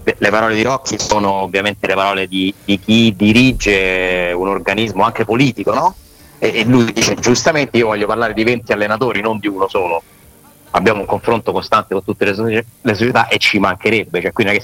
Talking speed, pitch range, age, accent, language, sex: 200 wpm, 90-110 Hz, 30-49, native, Italian, male